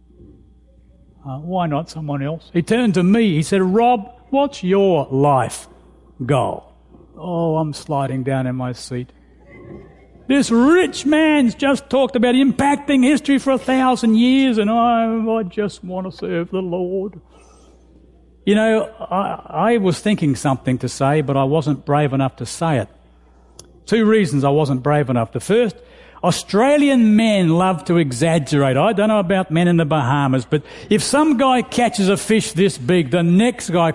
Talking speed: 165 wpm